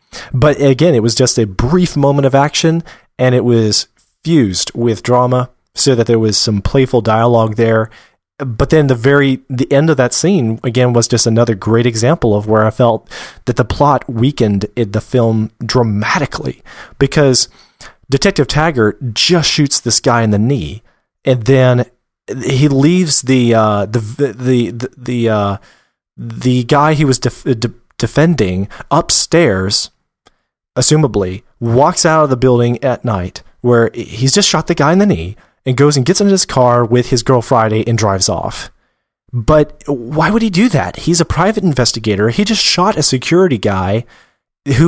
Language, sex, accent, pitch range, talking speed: English, male, American, 115-145 Hz, 165 wpm